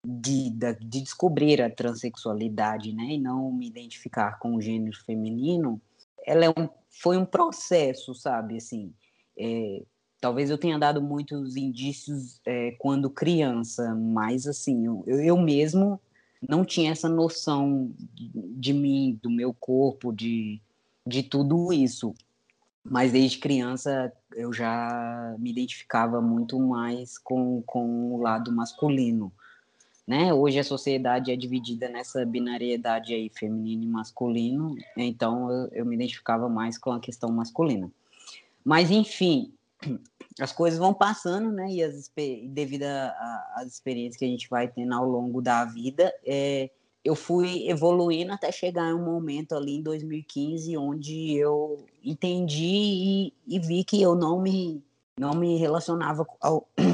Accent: Brazilian